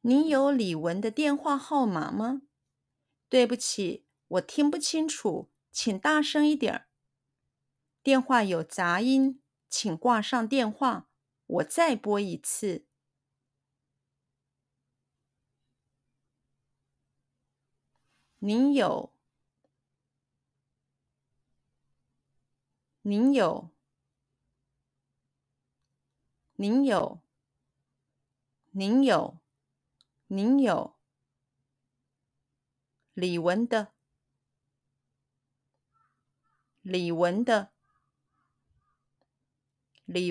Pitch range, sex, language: 135-215 Hz, female, Chinese